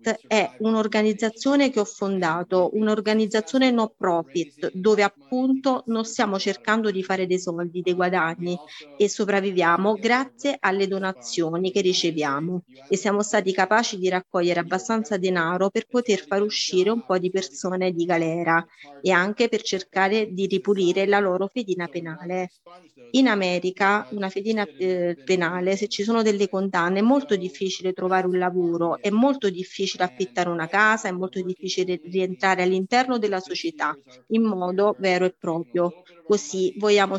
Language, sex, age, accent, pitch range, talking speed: Italian, female, 30-49, native, 180-215 Hz, 145 wpm